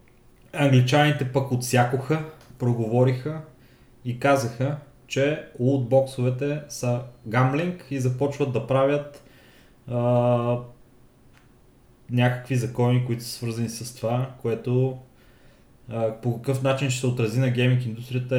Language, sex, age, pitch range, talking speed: Bulgarian, male, 20-39, 120-135 Hz, 110 wpm